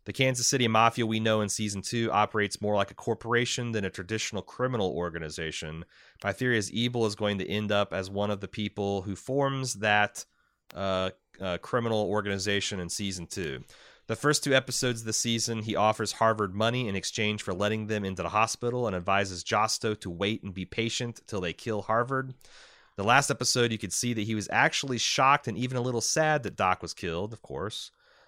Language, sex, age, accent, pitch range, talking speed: English, male, 30-49, American, 100-120 Hz, 205 wpm